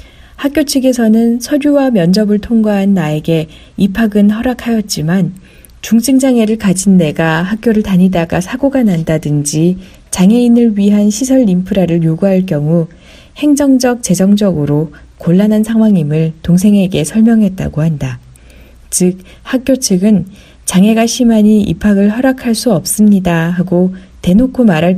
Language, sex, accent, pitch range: Korean, female, native, 165-225 Hz